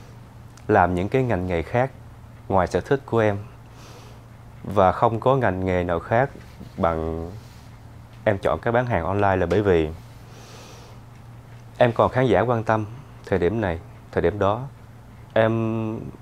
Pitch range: 100-120 Hz